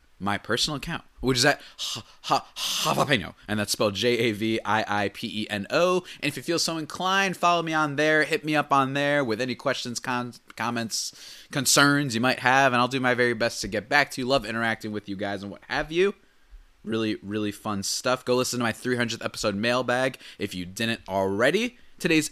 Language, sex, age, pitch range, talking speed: English, male, 20-39, 110-155 Hz, 220 wpm